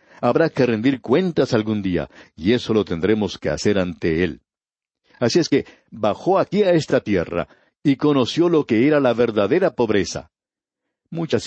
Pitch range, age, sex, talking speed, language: 100-140 Hz, 60-79, male, 160 wpm, Spanish